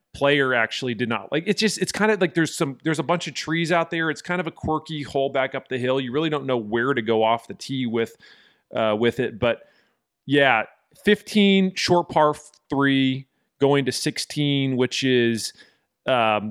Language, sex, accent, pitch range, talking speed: English, male, American, 115-140 Hz, 205 wpm